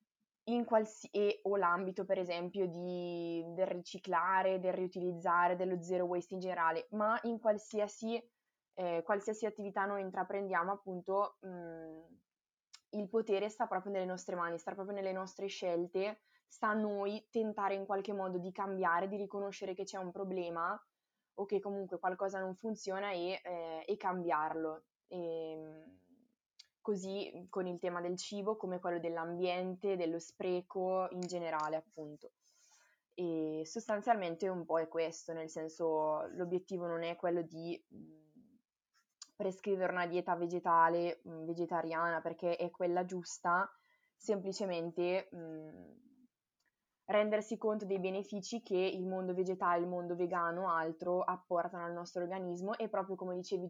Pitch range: 175-200 Hz